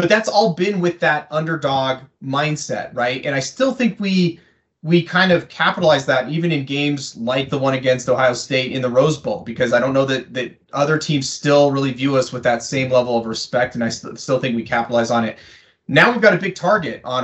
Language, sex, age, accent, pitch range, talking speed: English, male, 30-49, American, 125-160 Hz, 230 wpm